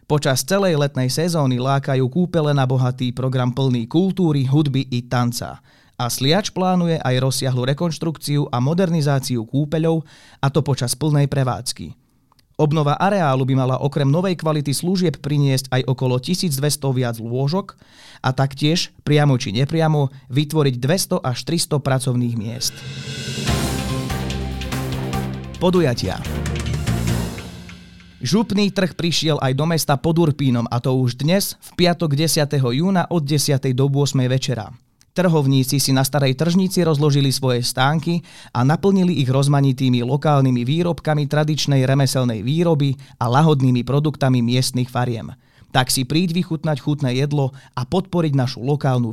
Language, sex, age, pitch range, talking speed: Slovak, male, 30-49, 125-155 Hz, 130 wpm